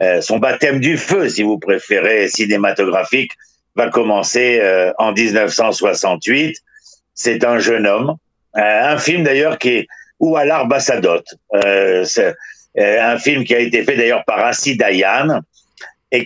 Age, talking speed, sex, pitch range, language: 60-79, 150 wpm, male, 120-175 Hz, French